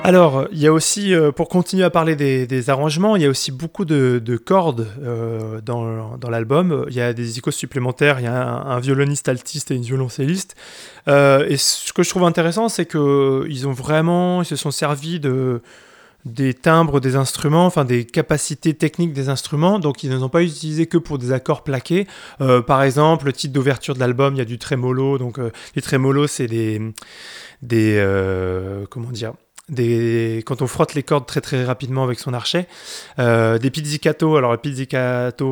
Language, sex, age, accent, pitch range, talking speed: French, male, 30-49, French, 125-155 Hz, 200 wpm